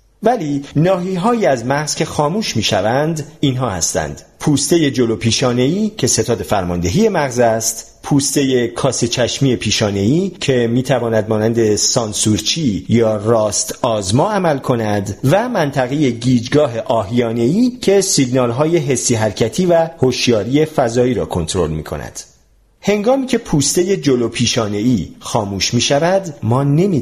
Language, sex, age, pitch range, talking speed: Persian, male, 40-59, 115-165 Hz, 120 wpm